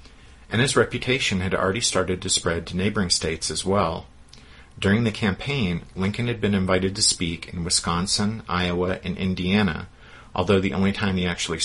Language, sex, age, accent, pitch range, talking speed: English, male, 40-59, American, 85-100 Hz, 170 wpm